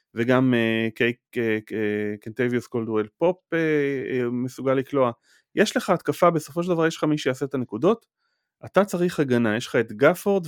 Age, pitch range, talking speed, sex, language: 30-49, 115-155 Hz, 160 wpm, male, Hebrew